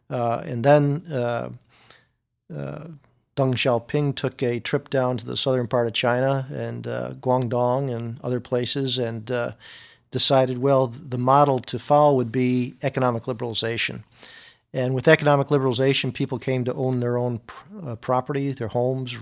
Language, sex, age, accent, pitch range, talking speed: English, male, 50-69, American, 120-140 Hz, 155 wpm